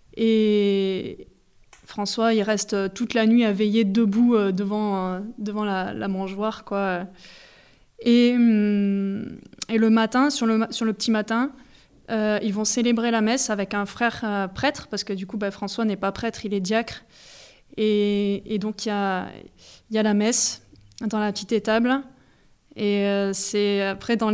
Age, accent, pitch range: 20-39, French, 200-225 Hz